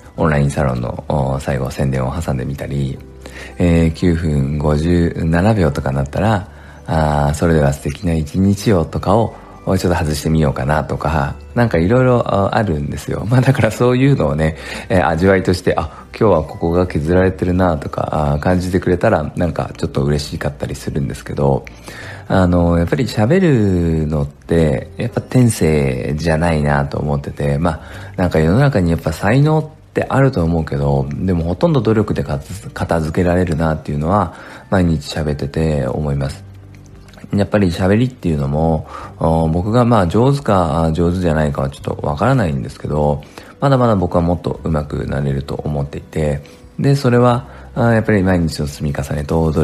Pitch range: 75-100 Hz